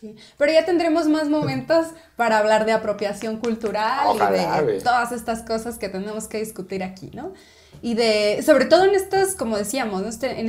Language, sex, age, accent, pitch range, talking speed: Spanish, female, 20-39, Mexican, 215-280 Hz, 170 wpm